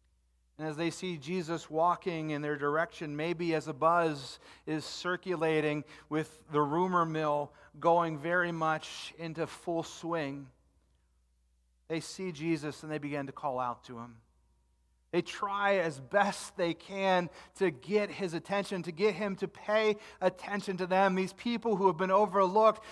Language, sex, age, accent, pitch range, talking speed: English, male, 40-59, American, 130-195 Hz, 155 wpm